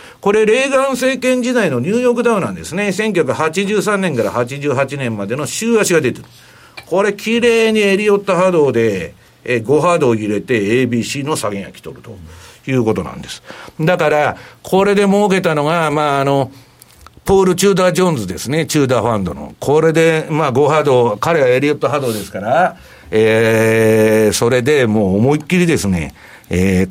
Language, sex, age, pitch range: Japanese, male, 60-79, 120-195 Hz